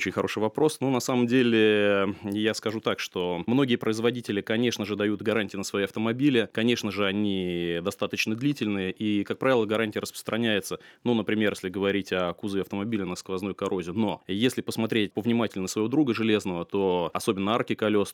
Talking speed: 170 wpm